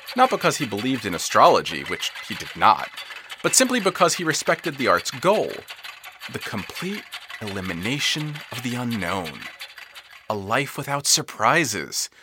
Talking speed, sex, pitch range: 135 wpm, male, 130-180 Hz